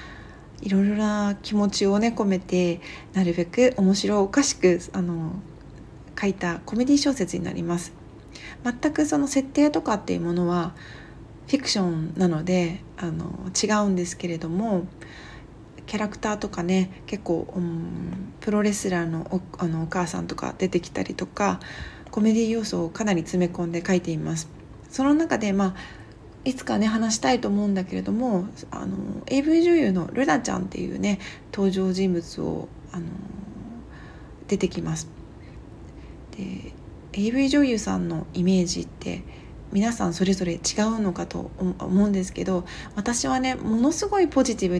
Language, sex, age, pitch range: Japanese, female, 40-59, 175-225 Hz